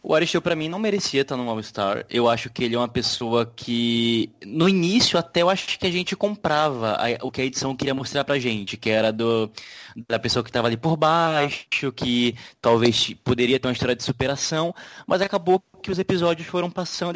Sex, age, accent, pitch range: male, 20-39, Brazilian, 120-170 Hz